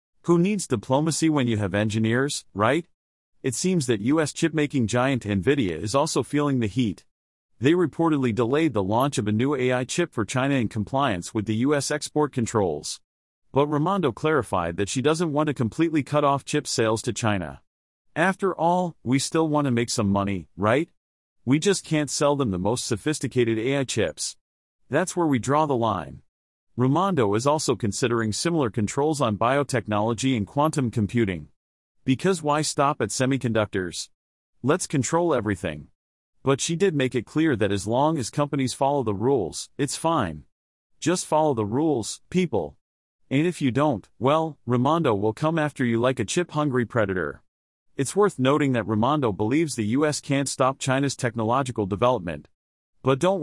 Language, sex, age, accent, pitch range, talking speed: English, male, 40-59, American, 110-150 Hz, 165 wpm